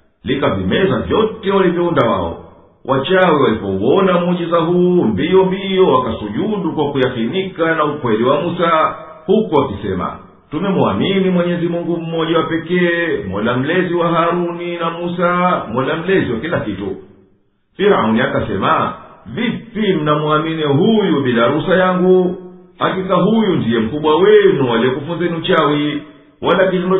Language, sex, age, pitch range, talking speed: Swahili, male, 50-69, 150-190 Hz, 120 wpm